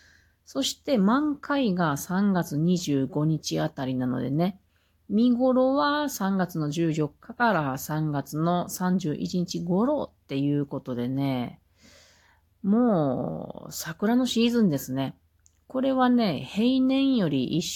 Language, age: Japanese, 40-59